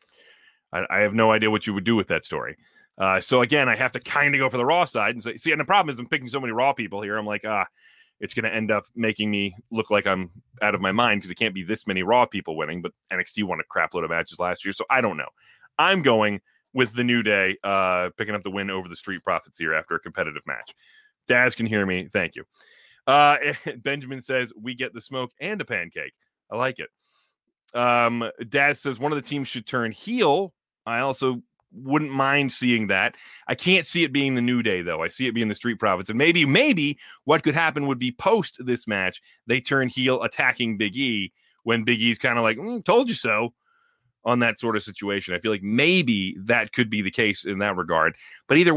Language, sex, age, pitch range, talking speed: English, male, 30-49, 110-140 Hz, 240 wpm